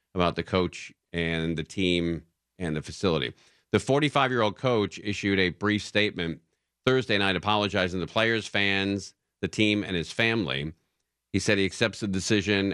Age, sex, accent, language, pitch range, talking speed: 50-69, male, American, English, 85-115 Hz, 160 wpm